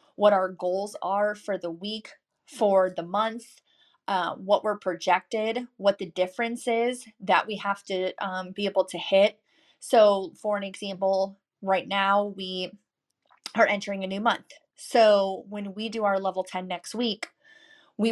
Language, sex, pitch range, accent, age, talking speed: English, female, 185-210 Hz, American, 20-39, 160 wpm